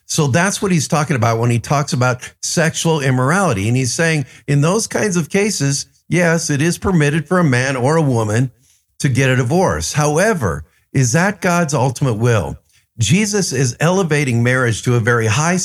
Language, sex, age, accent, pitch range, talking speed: English, male, 50-69, American, 125-170 Hz, 185 wpm